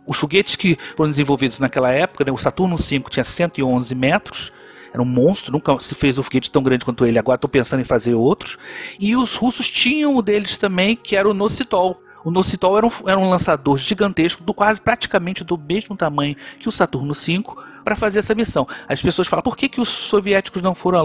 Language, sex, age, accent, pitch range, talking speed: Portuguese, male, 50-69, Brazilian, 140-195 Hz, 215 wpm